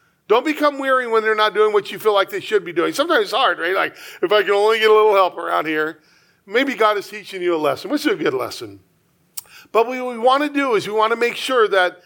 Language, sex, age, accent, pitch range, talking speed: English, male, 40-59, American, 195-275 Hz, 275 wpm